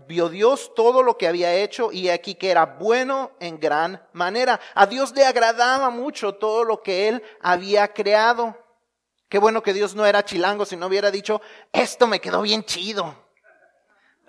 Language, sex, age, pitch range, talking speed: Spanish, male, 40-59, 205-260 Hz, 180 wpm